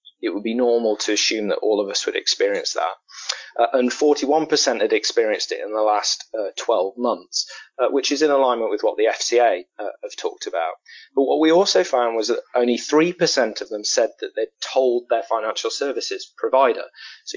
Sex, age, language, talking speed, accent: male, 30-49, English, 200 wpm, British